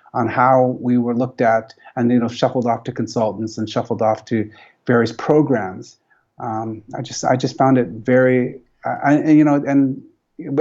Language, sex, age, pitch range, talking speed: English, male, 30-49, 115-140 Hz, 175 wpm